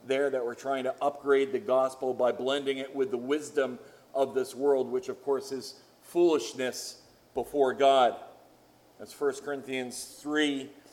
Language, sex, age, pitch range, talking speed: English, male, 40-59, 140-180 Hz, 155 wpm